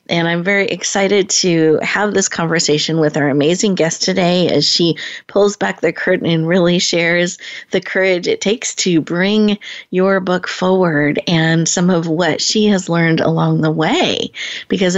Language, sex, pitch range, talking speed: English, female, 160-195 Hz, 170 wpm